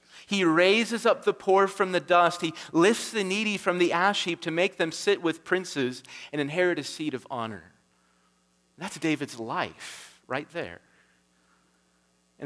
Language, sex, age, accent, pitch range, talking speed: English, male, 40-59, American, 125-170 Hz, 165 wpm